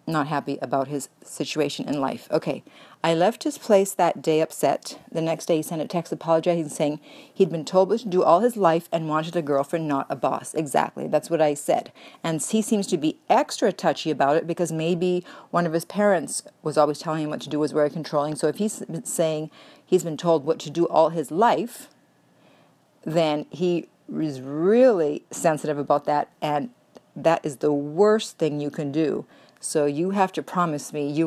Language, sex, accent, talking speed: English, female, American, 205 wpm